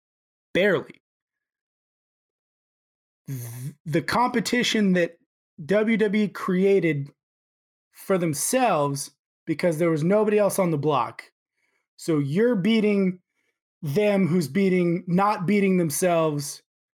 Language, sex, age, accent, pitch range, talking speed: English, male, 20-39, American, 145-195 Hz, 90 wpm